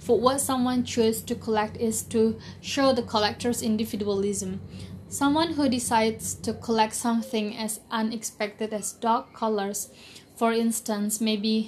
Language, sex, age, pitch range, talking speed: Indonesian, female, 20-39, 215-240 Hz, 135 wpm